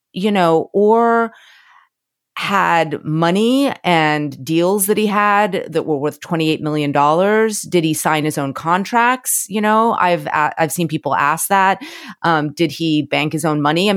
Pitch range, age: 145-185 Hz, 30-49